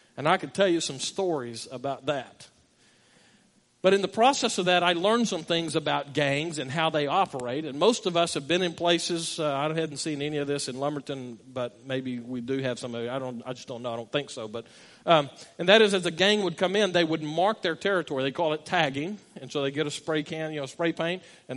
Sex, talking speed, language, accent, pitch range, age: male, 255 wpm, English, American, 155-200 Hz, 40-59